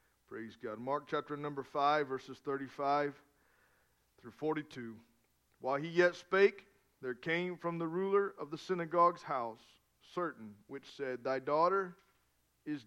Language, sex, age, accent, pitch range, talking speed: English, male, 40-59, American, 130-205 Hz, 135 wpm